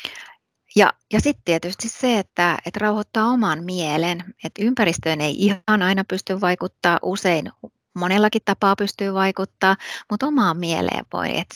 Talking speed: 135 wpm